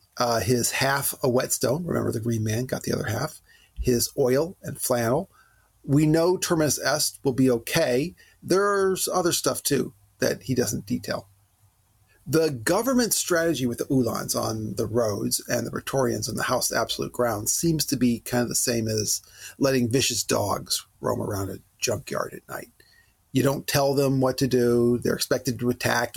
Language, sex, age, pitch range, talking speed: English, male, 40-59, 115-145 Hz, 175 wpm